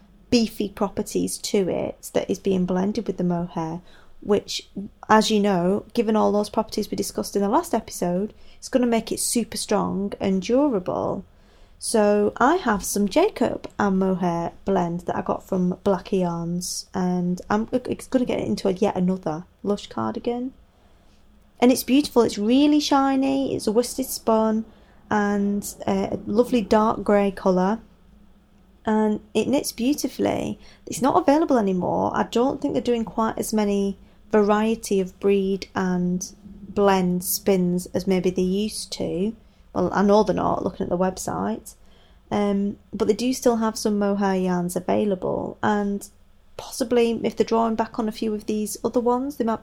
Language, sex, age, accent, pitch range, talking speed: English, female, 20-39, British, 190-230 Hz, 165 wpm